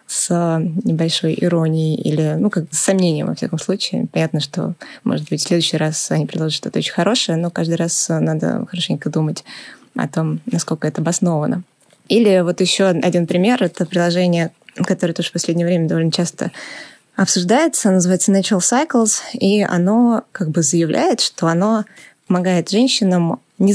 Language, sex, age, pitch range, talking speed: Russian, female, 20-39, 165-195 Hz, 155 wpm